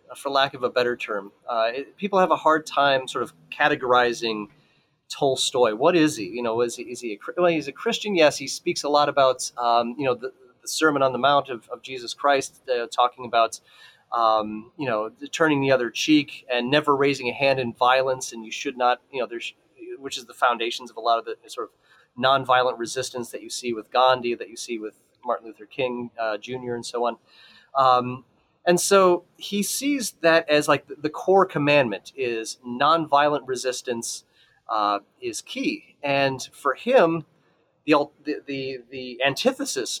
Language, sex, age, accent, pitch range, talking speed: English, male, 30-49, American, 125-160 Hz, 195 wpm